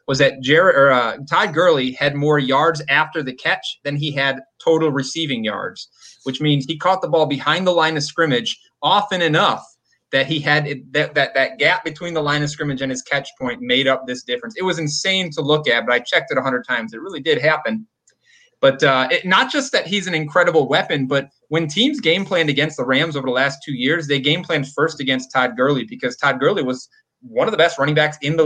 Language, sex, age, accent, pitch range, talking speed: English, male, 20-39, American, 135-165 Hz, 235 wpm